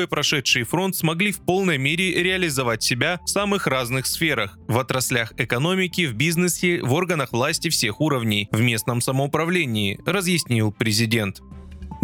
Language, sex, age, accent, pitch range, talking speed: Russian, male, 20-39, native, 125-180 Hz, 140 wpm